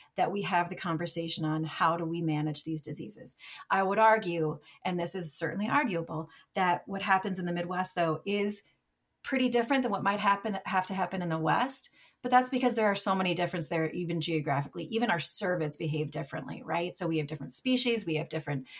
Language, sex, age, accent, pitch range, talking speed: English, female, 30-49, American, 160-195 Hz, 210 wpm